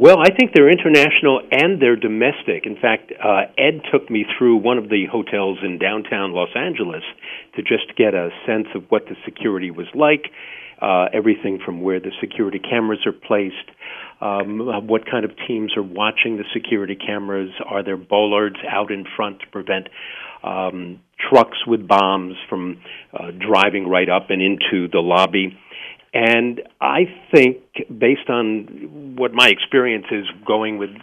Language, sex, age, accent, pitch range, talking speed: English, male, 50-69, American, 95-115 Hz, 165 wpm